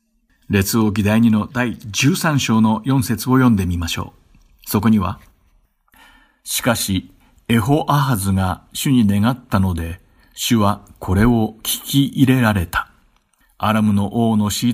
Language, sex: Japanese, male